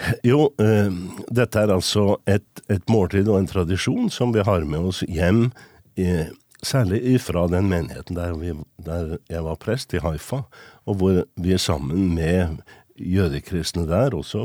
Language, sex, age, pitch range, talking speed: English, male, 60-79, 85-110 Hz, 160 wpm